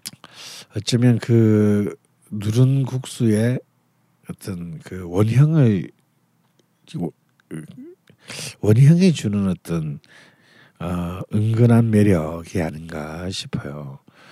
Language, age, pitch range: Korean, 60-79, 90-125 Hz